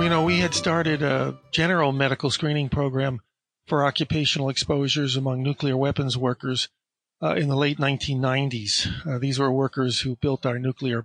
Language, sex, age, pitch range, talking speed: English, male, 50-69, 135-160 Hz, 165 wpm